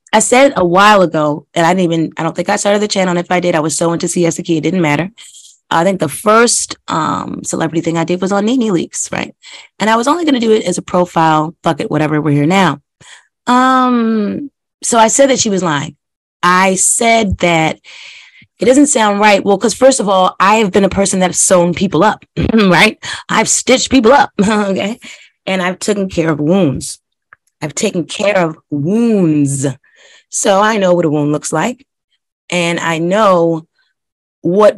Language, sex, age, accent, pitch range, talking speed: English, female, 30-49, American, 165-210 Hz, 200 wpm